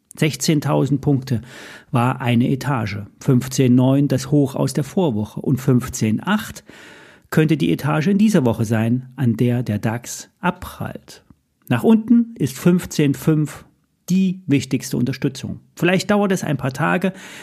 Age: 40-59